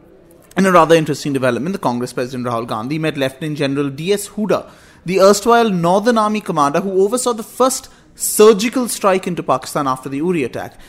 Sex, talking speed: male, 175 wpm